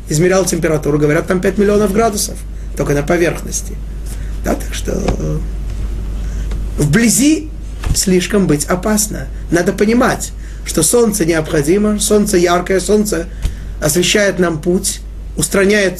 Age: 30-49